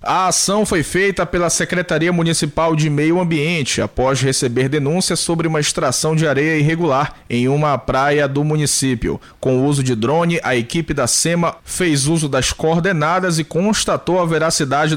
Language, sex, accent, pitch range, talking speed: Portuguese, male, Brazilian, 145-175 Hz, 165 wpm